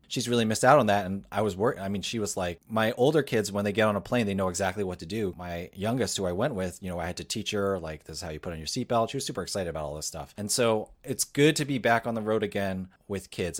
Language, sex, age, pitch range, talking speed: English, male, 30-49, 95-120 Hz, 320 wpm